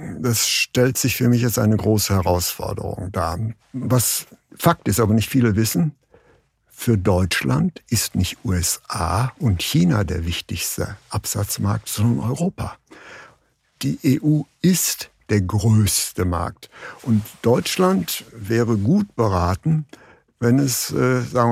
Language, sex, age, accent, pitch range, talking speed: German, male, 60-79, German, 105-140 Hz, 120 wpm